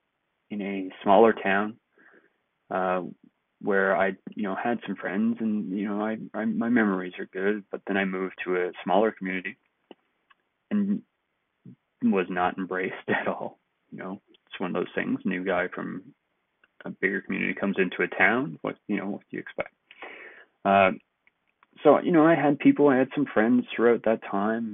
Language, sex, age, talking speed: English, male, 30-49, 175 wpm